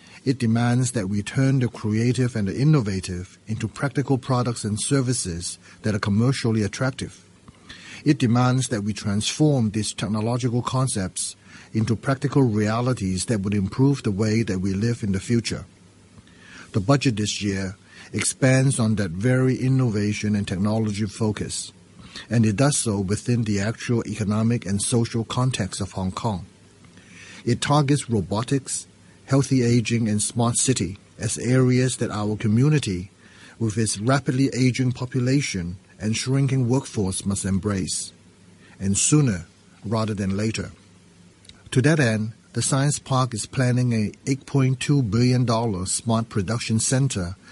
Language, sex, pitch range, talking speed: English, male, 100-125 Hz, 145 wpm